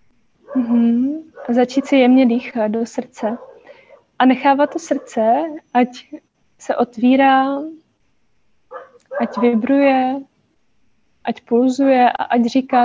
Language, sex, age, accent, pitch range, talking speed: Czech, female, 20-39, native, 230-260 Hz, 105 wpm